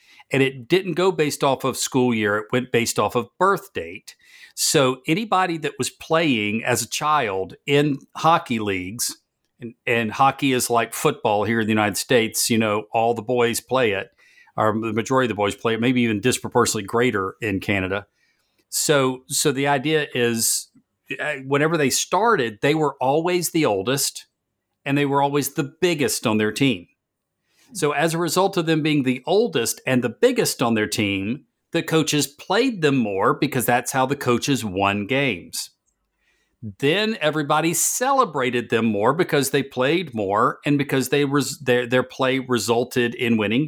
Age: 50-69